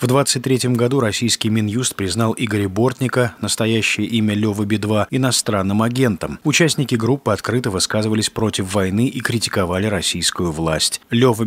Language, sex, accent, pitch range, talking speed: Russian, male, native, 100-125 Hz, 130 wpm